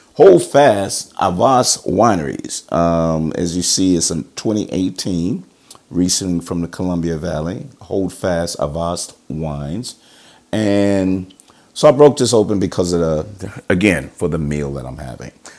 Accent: American